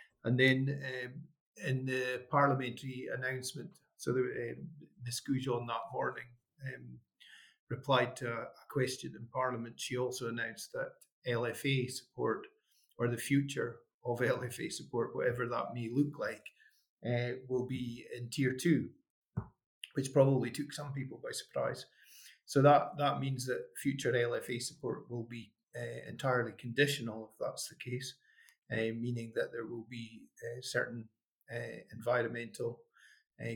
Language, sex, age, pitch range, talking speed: English, male, 40-59, 120-140 Hz, 140 wpm